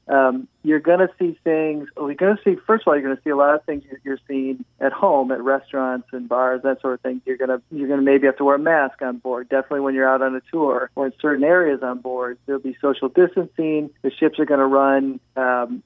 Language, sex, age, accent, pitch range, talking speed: English, male, 40-59, American, 130-150 Hz, 265 wpm